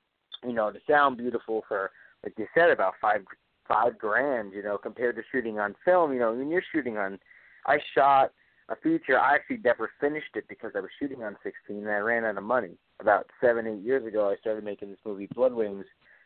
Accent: American